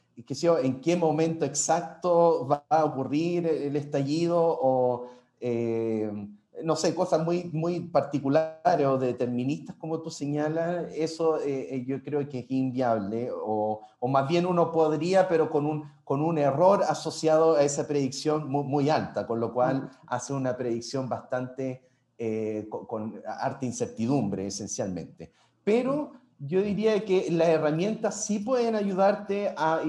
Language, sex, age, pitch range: Spanish, male, 30-49, 125-165 Hz